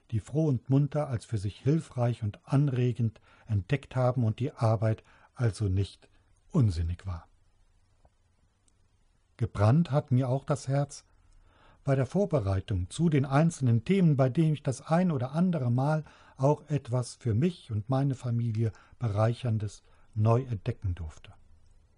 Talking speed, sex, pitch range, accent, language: 140 wpm, male, 100-140 Hz, German, German